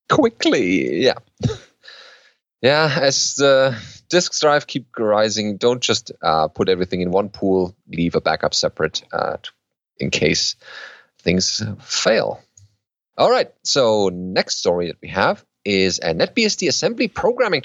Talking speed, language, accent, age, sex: 135 wpm, English, German, 30-49, male